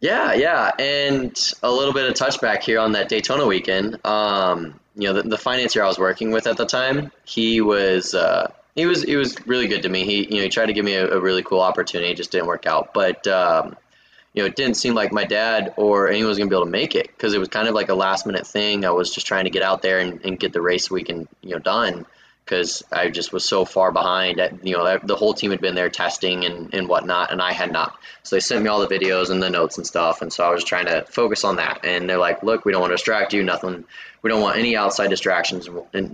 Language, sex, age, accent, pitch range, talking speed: English, male, 20-39, American, 90-110 Hz, 270 wpm